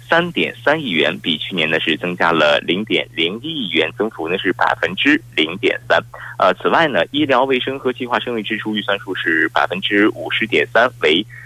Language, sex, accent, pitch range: Korean, male, Chinese, 95-130 Hz